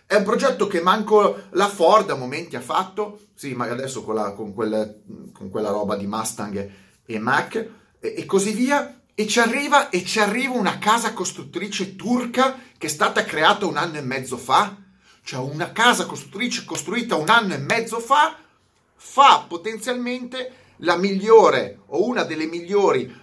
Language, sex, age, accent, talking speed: Italian, male, 30-49, native, 170 wpm